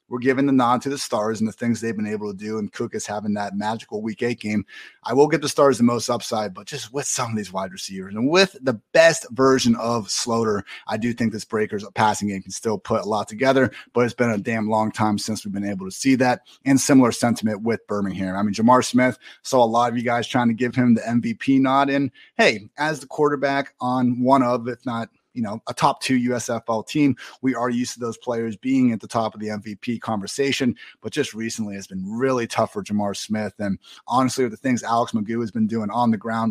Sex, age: male, 30-49